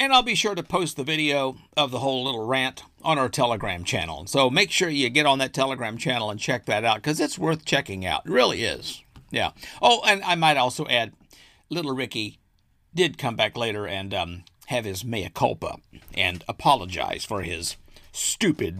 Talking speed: 200 wpm